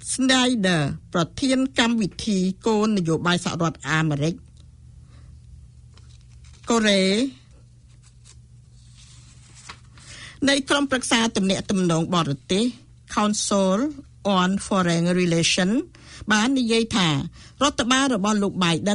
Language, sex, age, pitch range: English, female, 60-79, 165-230 Hz